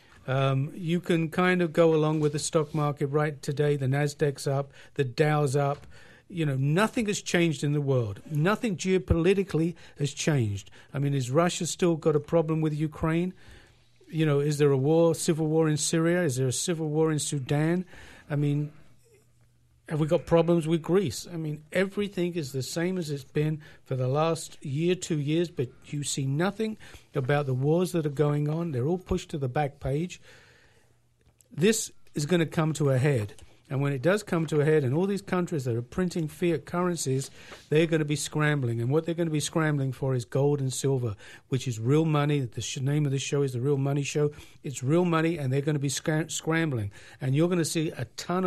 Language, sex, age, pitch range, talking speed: English, male, 50-69, 140-170 Hz, 210 wpm